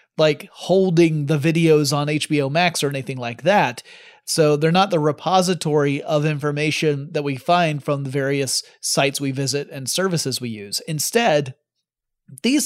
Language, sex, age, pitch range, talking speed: English, male, 30-49, 140-180 Hz, 155 wpm